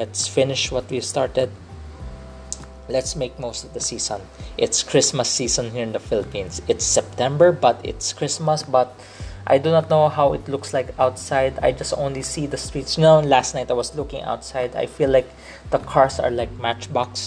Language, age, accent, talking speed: English, 20-39, Filipino, 190 wpm